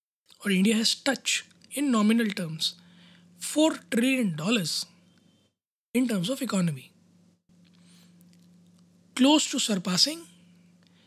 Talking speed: 90 wpm